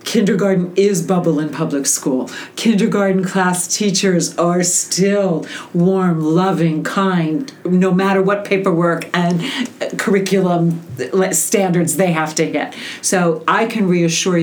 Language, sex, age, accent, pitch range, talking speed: English, female, 50-69, American, 170-215 Hz, 120 wpm